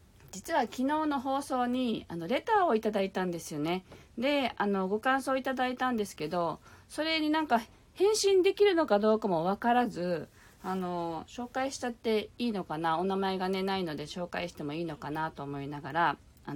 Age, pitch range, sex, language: 40-59, 155-245 Hz, female, Japanese